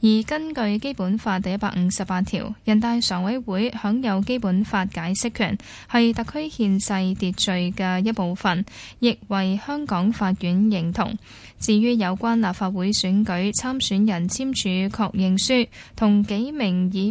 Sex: female